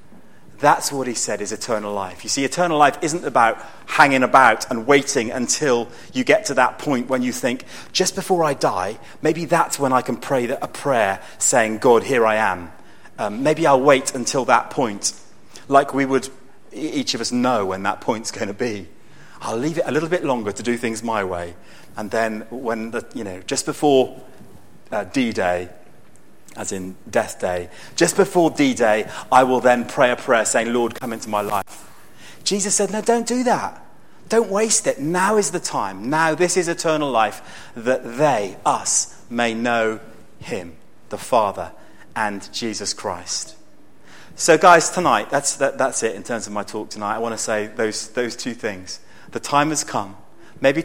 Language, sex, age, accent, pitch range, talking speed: English, male, 30-49, British, 110-150 Hz, 190 wpm